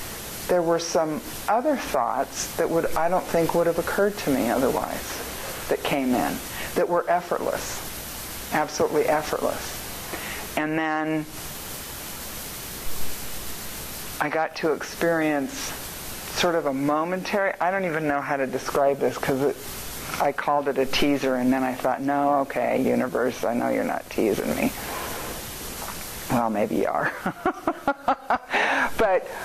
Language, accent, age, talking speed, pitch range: English, American, 50-69, 135 wpm, 130-165 Hz